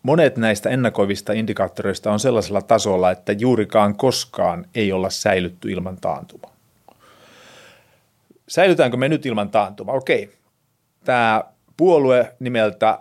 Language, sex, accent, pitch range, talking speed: Finnish, male, native, 100-125 Hz, 110 wpm